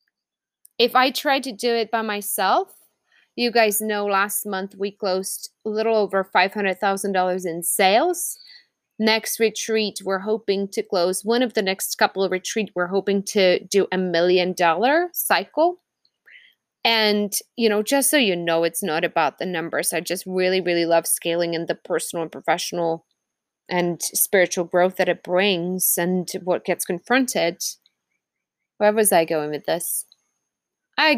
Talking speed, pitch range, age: 160 wpm, 185-255 Hz, 20-39